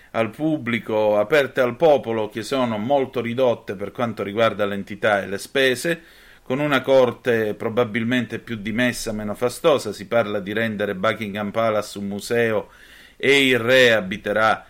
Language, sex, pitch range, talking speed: Italian, male, 100-120 Hz, 145 wpm